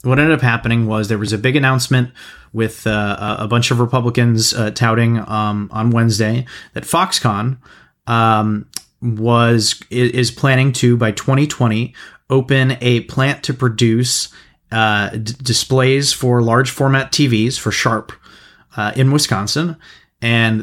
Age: 30-49